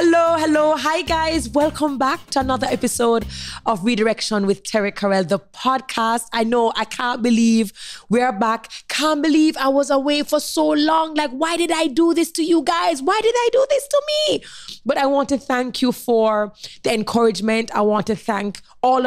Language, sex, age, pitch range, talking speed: English, female, 20-39, 195-255 Hz, 190 wpm